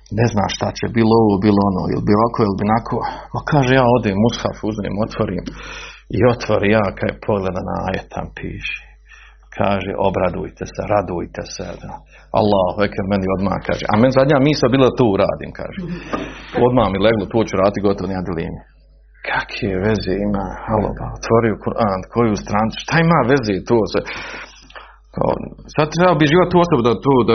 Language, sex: Croatian, male